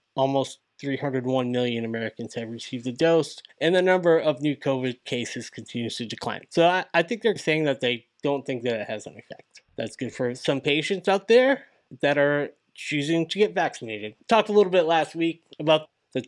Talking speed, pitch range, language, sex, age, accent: 200 wpm, 130-165 Hz, English, male, 20-39, American